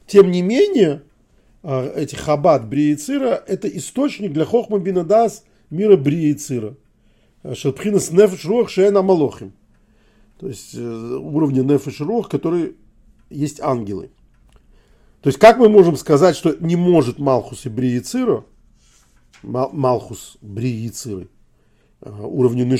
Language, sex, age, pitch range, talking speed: Russian, male, 40-59, 125-175 Hz, 115 wpm